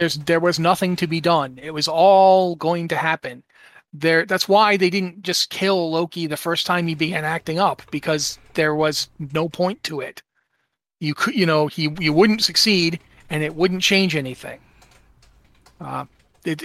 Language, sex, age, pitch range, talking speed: English, male, 40-59, 150-180 Hz, 180 wpm